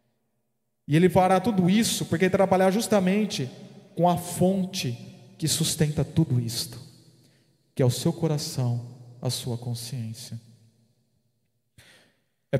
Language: Portuguese